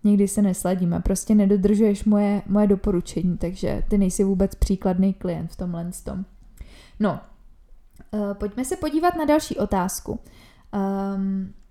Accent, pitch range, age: native, 190-215 Hz, 20-39